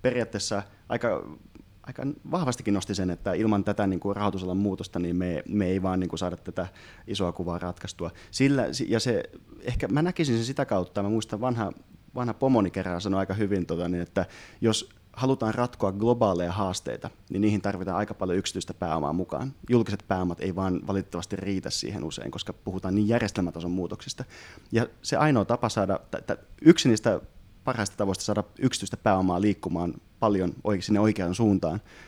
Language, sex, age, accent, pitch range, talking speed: Finnish, male, 30-49, native, 90-110 Hz, 170 wpm